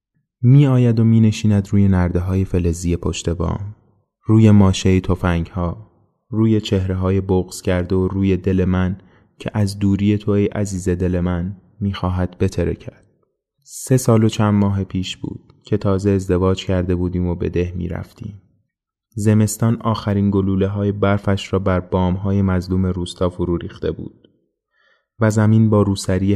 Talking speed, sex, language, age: 145 wpm, male, Persian, 20-39